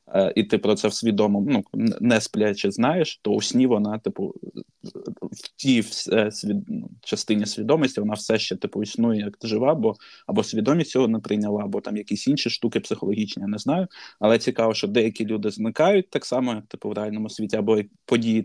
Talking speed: 185 wpm